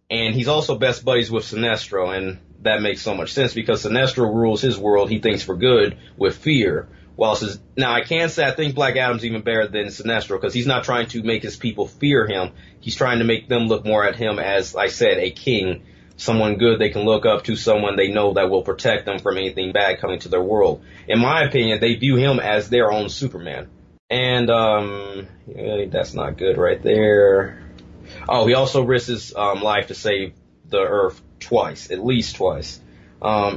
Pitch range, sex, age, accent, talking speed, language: 100-120 Hz, male, 30-49, American, 210 wpm, English